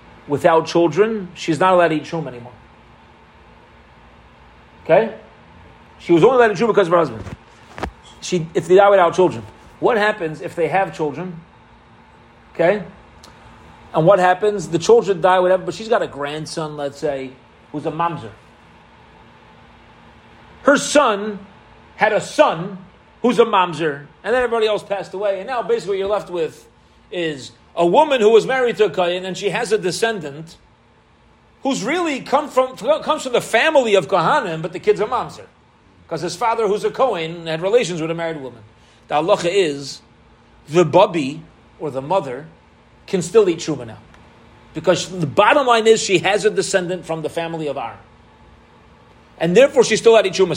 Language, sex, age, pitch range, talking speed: English, male, 30-49, 160-230 Hz, 175 wpm